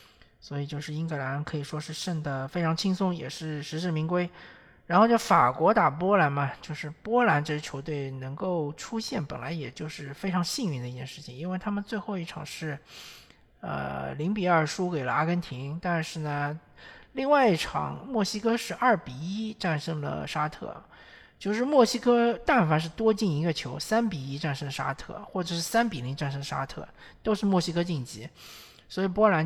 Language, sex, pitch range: Chinese, male, 145-185 Hz